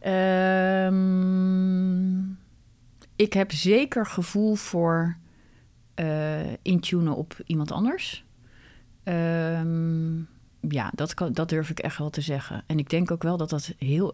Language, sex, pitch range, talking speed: Dutch, female, 165-200 Hz, 125 wpm